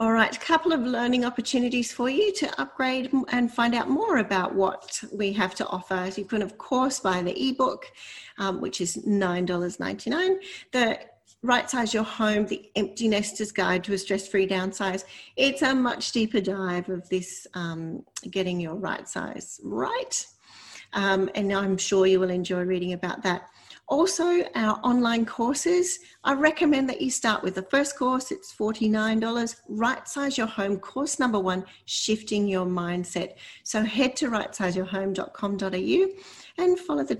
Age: 40-59